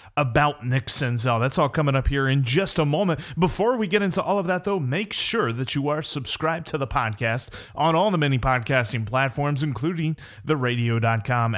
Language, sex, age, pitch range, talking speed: English, male, 30-49, 125-170 Hz, 195 wpm